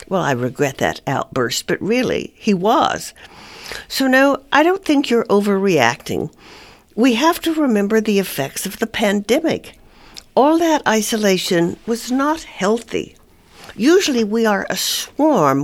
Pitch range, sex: 180-250 Hz, female